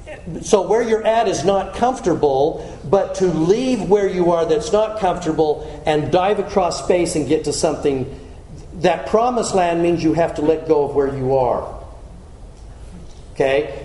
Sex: male